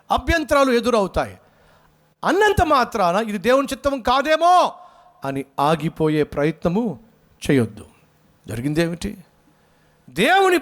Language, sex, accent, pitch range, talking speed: Telugu, male, native, 160-230 Hz, 80 wpm